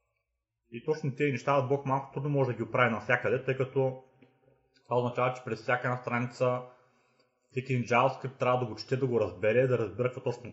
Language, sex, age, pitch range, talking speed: Bulgarian, male, 30-49, 105-130 Hz, 200 wpm